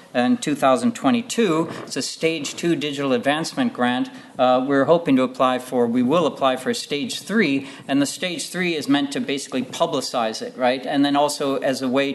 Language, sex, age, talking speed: English, male, 50-69, 190 wpm